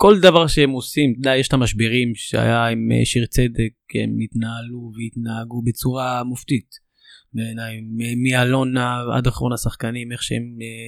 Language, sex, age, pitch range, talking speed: Hebrew, male, 20-39, 120-150 Hz, 140 wpm